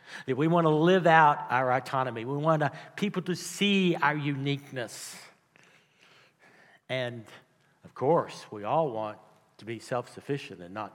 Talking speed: 145 wpm